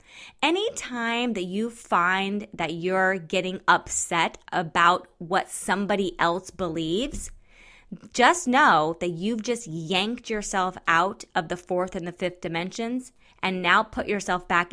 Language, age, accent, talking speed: English, 20-39, American, 135 wpm